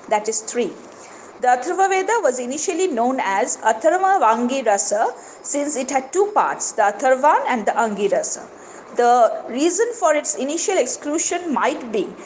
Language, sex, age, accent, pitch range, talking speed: English, female, 50-69, Indian, 225-315 Hz, 140 wpm